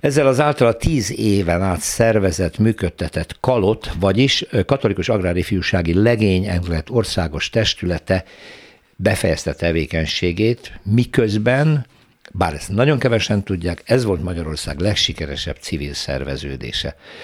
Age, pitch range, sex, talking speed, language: 60-79, 90-115 Hz, male, 110 wpm, Hungarian